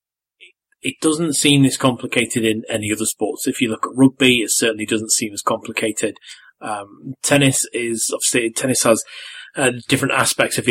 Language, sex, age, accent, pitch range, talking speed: English, male, 30-49, British, 110-135 Hz, 170 wpm